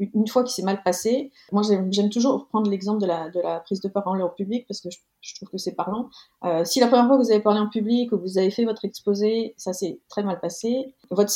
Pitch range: 185-235 Hz